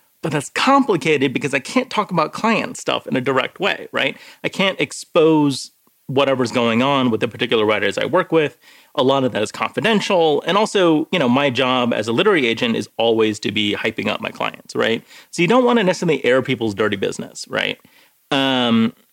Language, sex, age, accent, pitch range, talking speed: English, male, 30-49, American, 110-175 Hz, 205 wpm